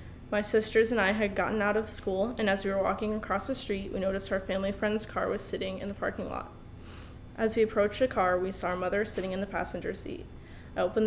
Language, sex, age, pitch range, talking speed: English, female, 20-39, 190-215 Hz, 245 wpm